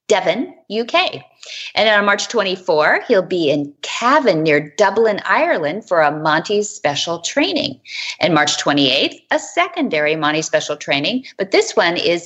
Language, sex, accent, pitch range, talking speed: English, female, American, 165-245 Hz, 145 wpm